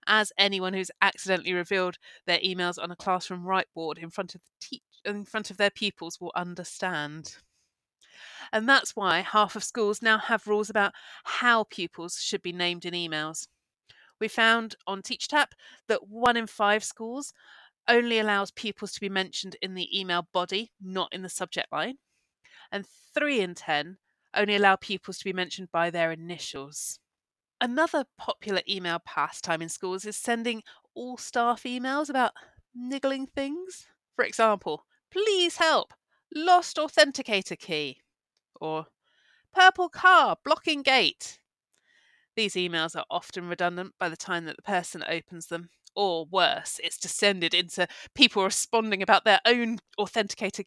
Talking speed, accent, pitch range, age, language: 150 wpm, British, 180-240 Hz, 30-49, English